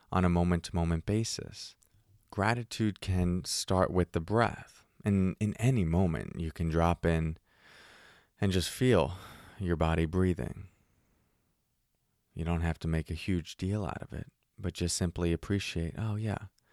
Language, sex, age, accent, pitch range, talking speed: English, male, 20-39, American, 85-105 Hz, 145 wpm